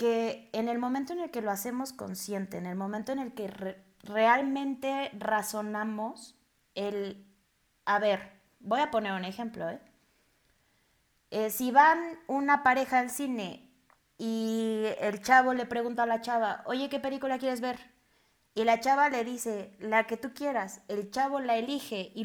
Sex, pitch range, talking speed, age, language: female, 215-270 Hz, 165 wpm, 20-39, Spanish